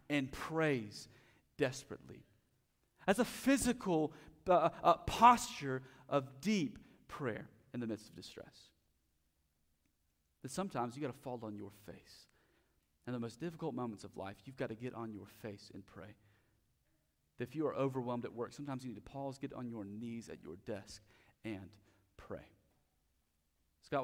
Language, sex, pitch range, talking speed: English, male, 110-140 Hz, 160 wpm